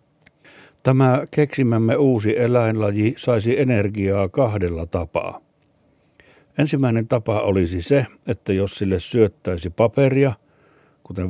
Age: 60-79